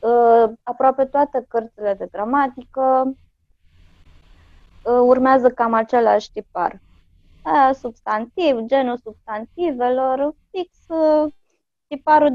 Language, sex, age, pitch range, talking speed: Romanian, female, 20-39, 195-265 Hz, 70 wpm